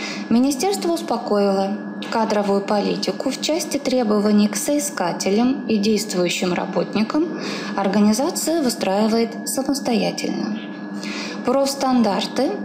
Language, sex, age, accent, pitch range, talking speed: Russian, female, 20-39, native, 185-250 Hz, 75 wpm